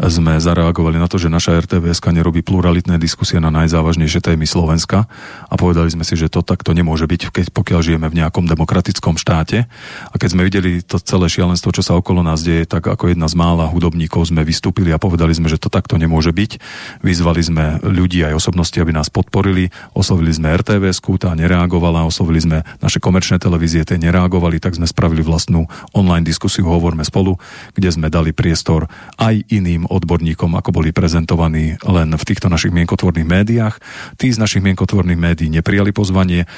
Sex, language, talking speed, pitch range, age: male, Slovak, 175 wpm, 80-95 Hz, 40-59